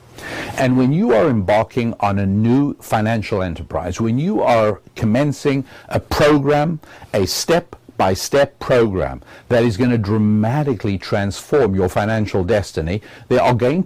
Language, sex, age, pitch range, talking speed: English, male, 60-79, 105-140 Hz, 135 wpm